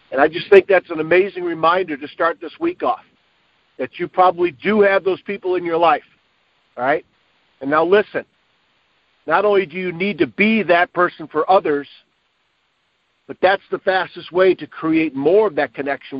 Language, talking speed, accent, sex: English, 185 wpm, American, male